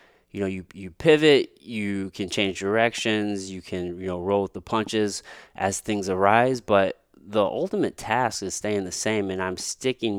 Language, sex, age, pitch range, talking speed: English, male, 20-39, 95-155 Hz, 185 wpm